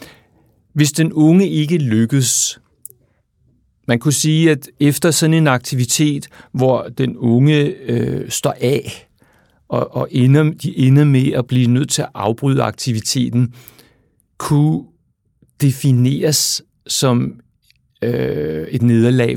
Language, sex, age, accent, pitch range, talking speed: Danish, male, 60-79, native, 120-150 Hz, 110 wpm